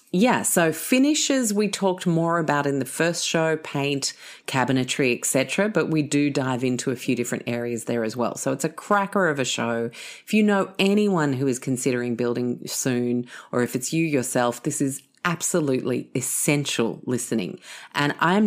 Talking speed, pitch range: 175 wpm, 120-155 Hz